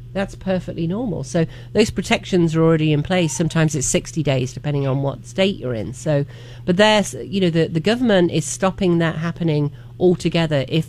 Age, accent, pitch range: 40-59, British, 135-185 Hz